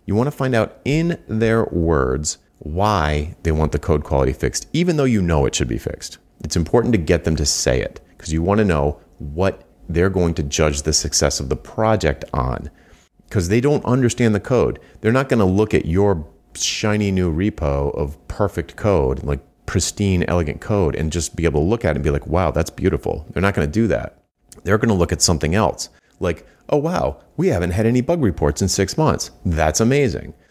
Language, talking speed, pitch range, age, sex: English, 220 wpm, 75-105 Hz, 40-59, male